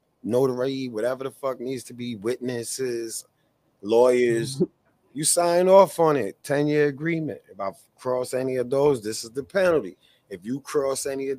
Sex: male